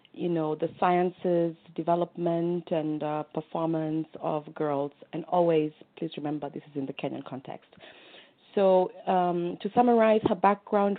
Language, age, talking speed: English, 30-49, 140 wpm